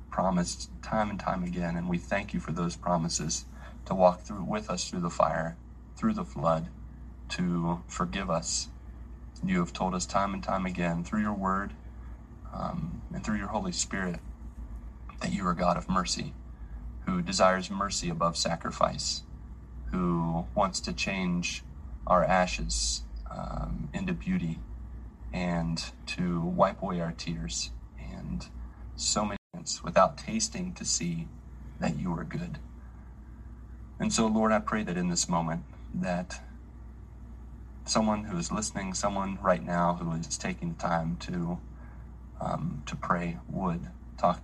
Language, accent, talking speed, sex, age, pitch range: English, American, 145 wpm, male, 30-49, 65-90 Hz